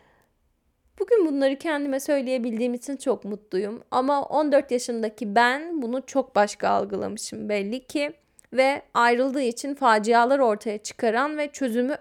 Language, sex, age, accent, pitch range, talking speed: Turkish, female, 10-29, native, 245-310 Hz, 125 wpm